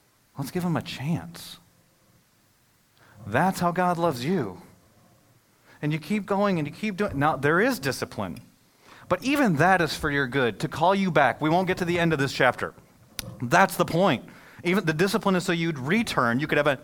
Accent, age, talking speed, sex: American, 30-49, 200 wpm, male